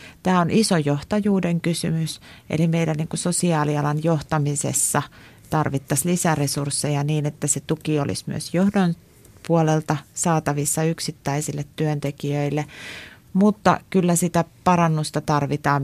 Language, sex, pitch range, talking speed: Finnish, female, 140-165 Hz, 100 wpm